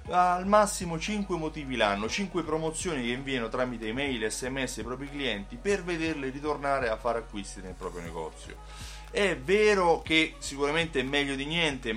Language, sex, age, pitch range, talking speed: Italian, male, 30-49, 110-155 Hz, 165 wpm